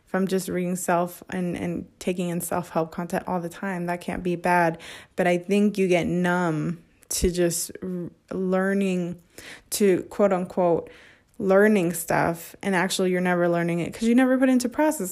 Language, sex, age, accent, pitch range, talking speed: English, female, 20-39, American, 170-195 Hz, 180 wpm